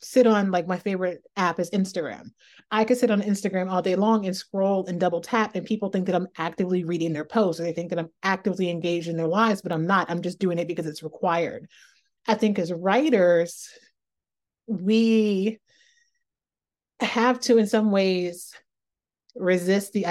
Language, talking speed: English, 185 wpm